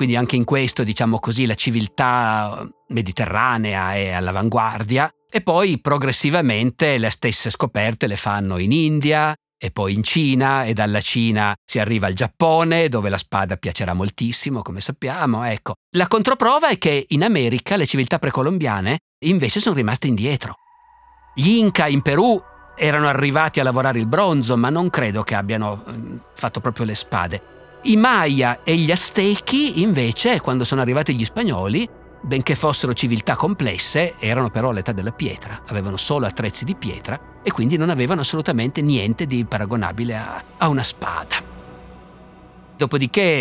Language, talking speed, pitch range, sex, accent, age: Italian, 150 wpm, 110-155 Hz, male, native, 50-69